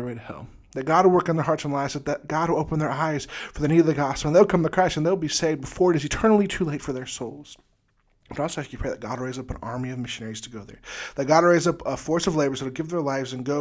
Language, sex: English, male